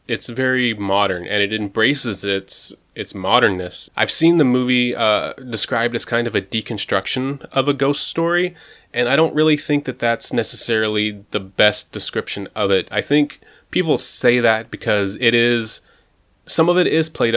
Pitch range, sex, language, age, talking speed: 100-125 Hz, male, English, 20-39, 175 wpm